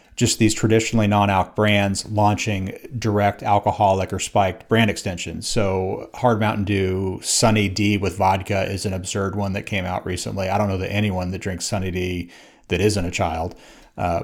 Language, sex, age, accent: English, male, 30-49, American